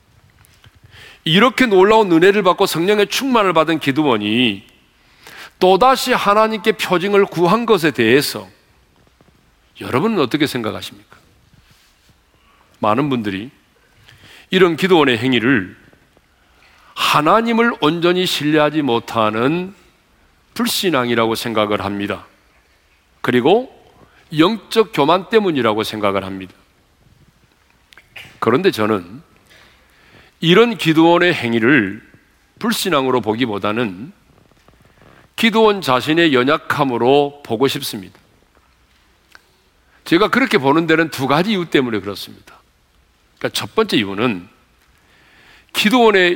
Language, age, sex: Korean, 40-59, male